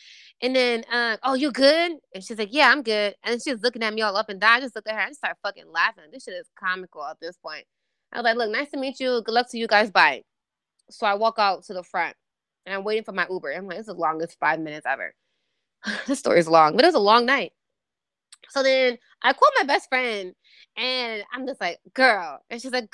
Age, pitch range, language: 20-39, 230-315 Hz, English